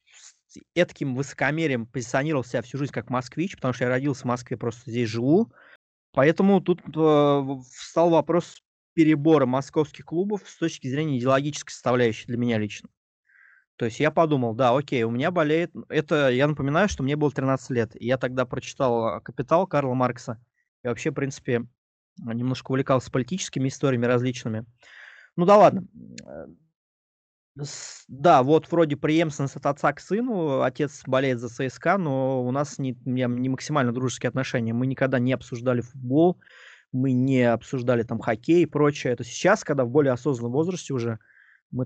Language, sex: Russian, male